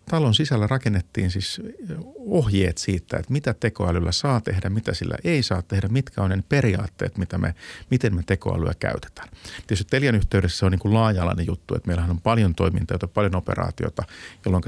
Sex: male